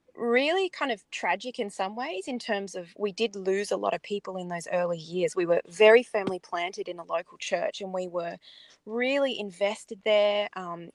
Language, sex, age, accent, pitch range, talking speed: English, female, 20-39, Australian, 185-230 Hz, 205 wpm